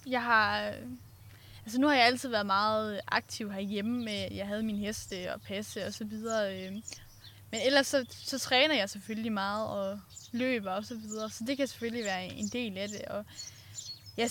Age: 10-29